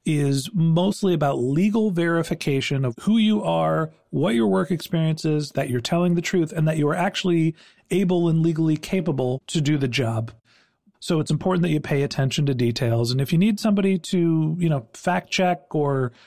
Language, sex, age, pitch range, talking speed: English, male, 40-59, 140-180 Hz, 190 wpm